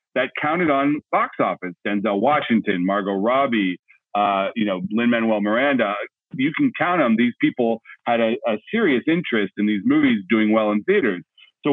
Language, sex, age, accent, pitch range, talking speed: English, male, 40-59, American, 105-140 Hz, 170 wpm